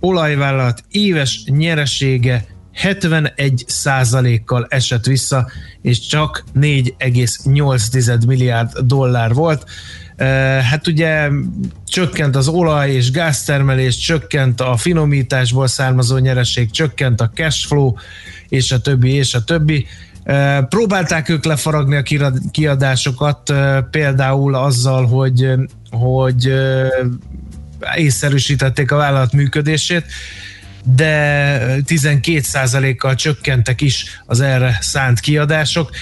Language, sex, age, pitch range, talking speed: Hungarian, male, 20-39, 125-145 Hz, 90 wpm